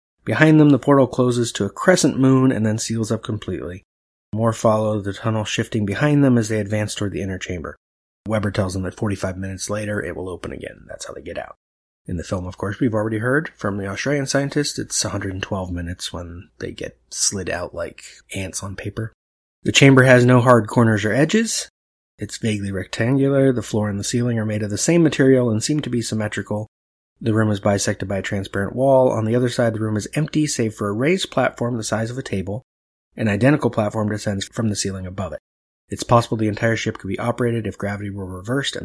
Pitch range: 95-120 Hz